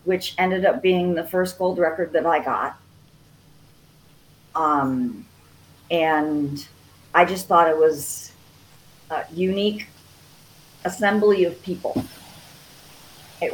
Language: English